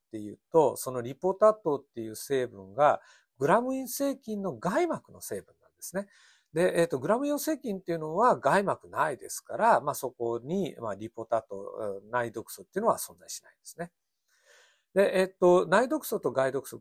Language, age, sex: Japanese, 50-69, male